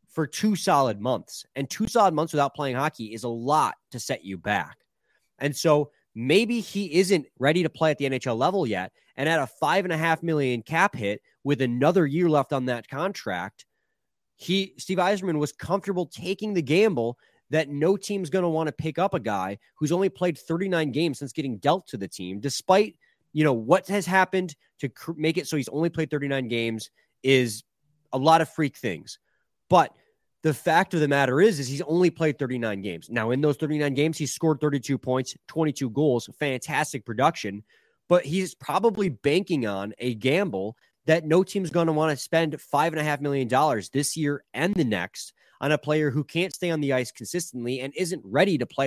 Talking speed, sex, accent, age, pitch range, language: 205 wpm, male, American, 20-39, 130-165 Hz, English